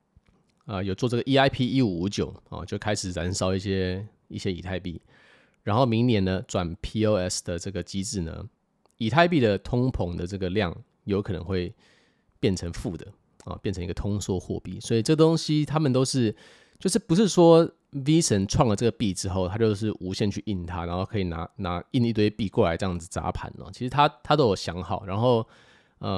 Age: 20-39